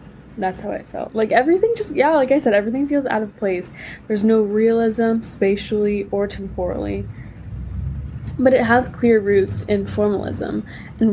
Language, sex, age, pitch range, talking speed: English, female, 10-29, 185-220 Hz, 160 wpm